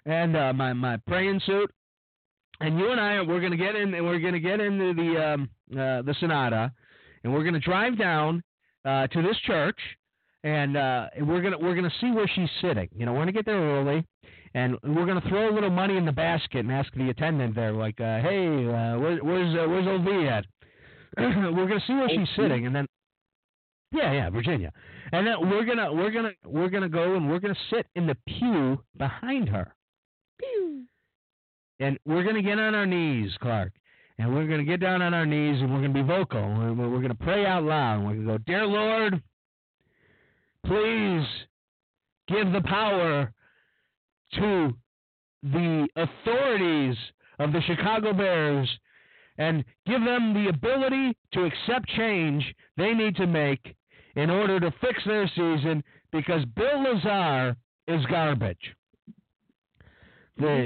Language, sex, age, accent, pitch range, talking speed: English, male, 50-69, American, 135-195 Hz, 175 wpm